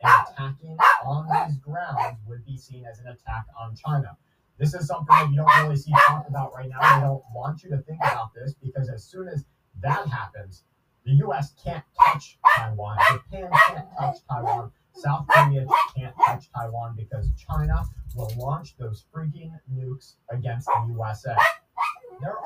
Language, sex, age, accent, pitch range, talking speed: English, male, 30-49, American, 120-145 Hz, 170 wpm